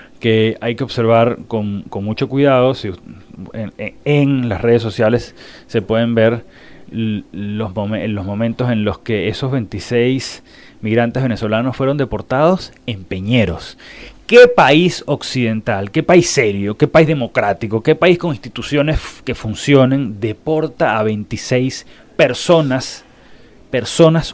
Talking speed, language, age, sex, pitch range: 125 wpm, Spanish, 30-49, male, 110-140 Hz